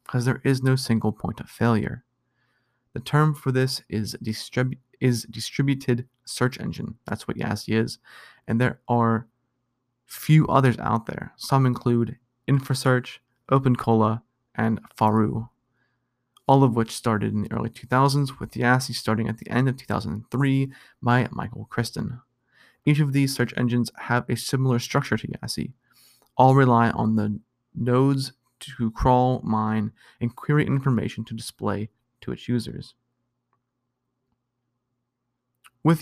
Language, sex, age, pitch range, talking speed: English, male, 30-49, 115-130 Hz, 135 wpm